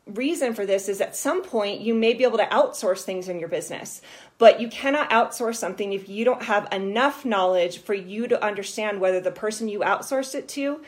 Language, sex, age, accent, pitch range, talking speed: English, female, 30-49, American, 185-240 Hz, 215 wpm